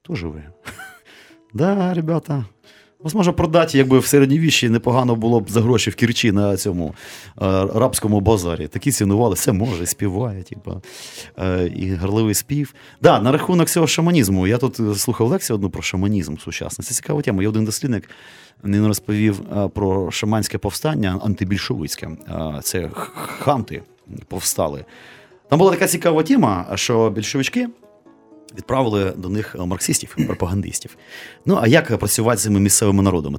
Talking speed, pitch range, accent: 145 wpm, 100-135 Hz, native